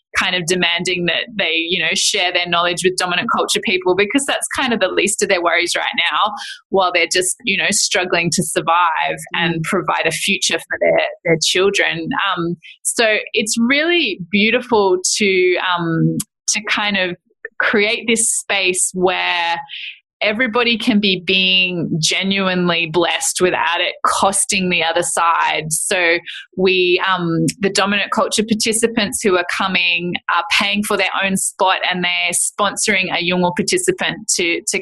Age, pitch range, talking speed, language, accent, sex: 20-39, 175-215 Hz, 160 wpm, English, Australian, female